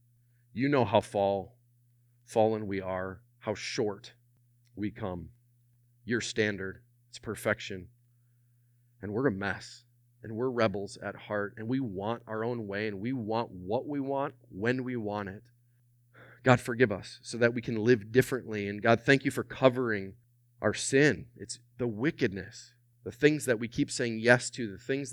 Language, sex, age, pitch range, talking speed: English, male, 30-49, 110-125 Hz, 165 wpm